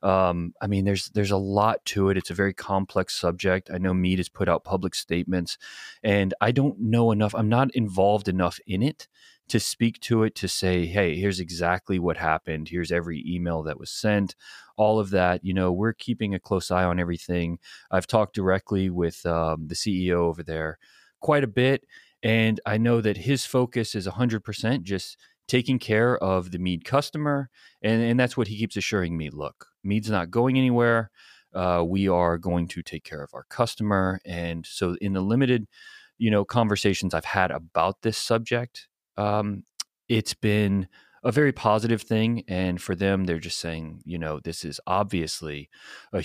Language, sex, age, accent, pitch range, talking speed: English, male, 30-49, American, 85-110 Hz, 185 wpm